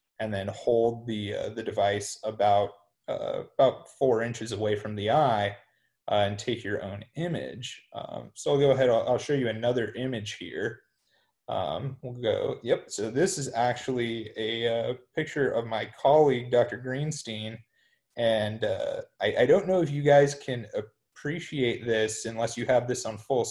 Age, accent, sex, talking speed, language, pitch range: 30-49, American, male, 175 wpm, English, 110-135 Hz